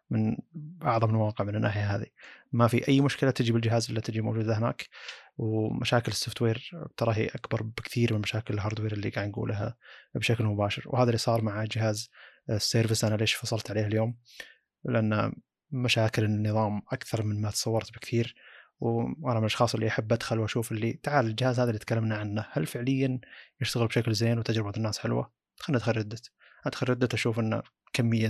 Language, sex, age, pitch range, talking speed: Arabic, male, 20-39, 110-120 Hz, 165 wpm